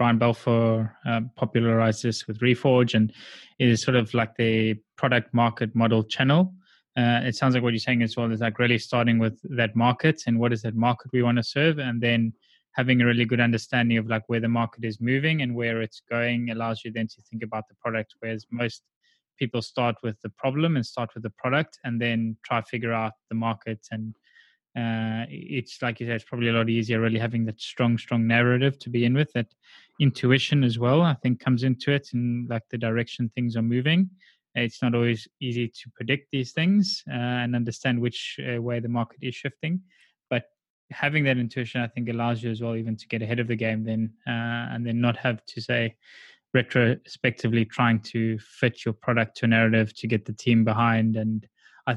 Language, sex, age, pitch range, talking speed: English, male, 20-39, 115-125 Hz, 215 wpm